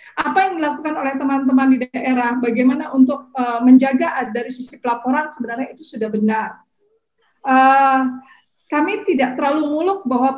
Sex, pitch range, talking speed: female, 240-295 Hz, 140 wpm